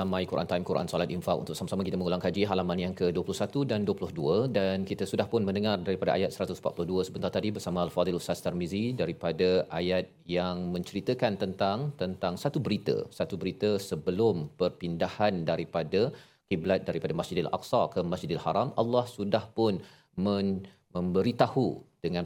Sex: male